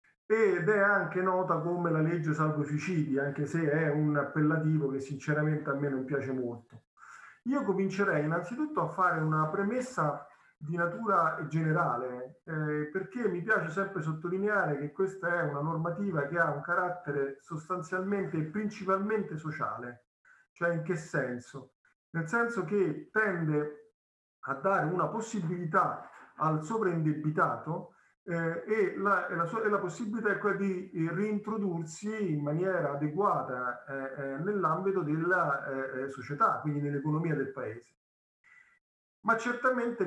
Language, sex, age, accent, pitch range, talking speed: Italian, male, 40-59, native, 145-190 Hz, 140 wpm